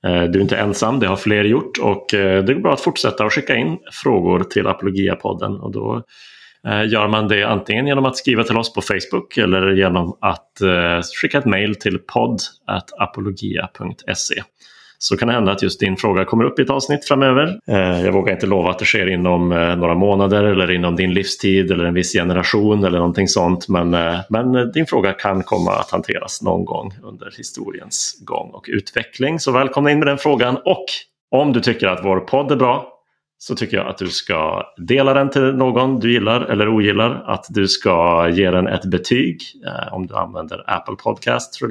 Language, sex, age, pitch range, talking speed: Swedish, male, 30-49, 95-130 Hz, 195 wpm